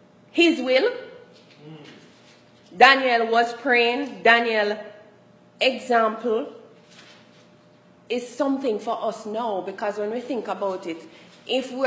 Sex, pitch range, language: female, 195-245 Hz, English